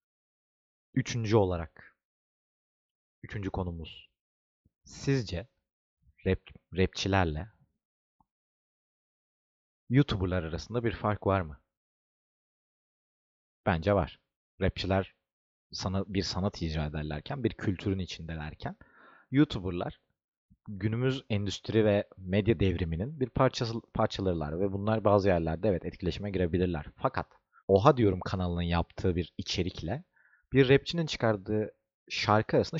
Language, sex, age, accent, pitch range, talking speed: Turkish, male, 40-59, native, 85-120 Hz, 95 wpm